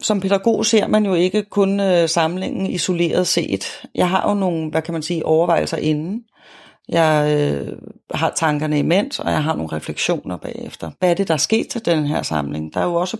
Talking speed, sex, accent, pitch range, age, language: 200 wpm, female, native, 155-185 Hz, 30-49, Danish